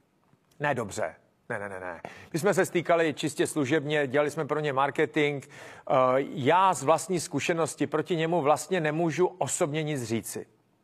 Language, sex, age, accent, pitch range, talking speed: Czech, male, 40-59, native, 145-170 Hz, 155 wpm